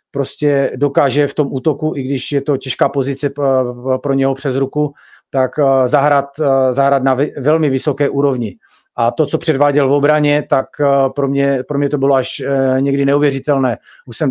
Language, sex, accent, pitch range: Czech, male, native, 130-145 Hz